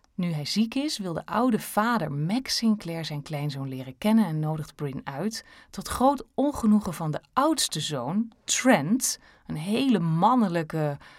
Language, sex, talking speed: Dutch, female, 155 wpm